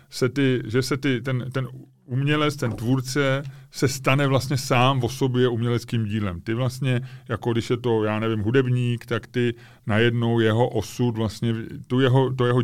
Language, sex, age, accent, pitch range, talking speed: Czech, male, 30-49, native, 110-130 Hz, 175 wpm